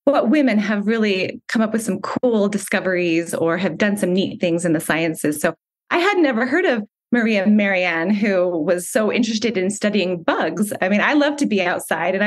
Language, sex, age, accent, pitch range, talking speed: English, female, 20-39, American, 180-220 Hz, 205 wpm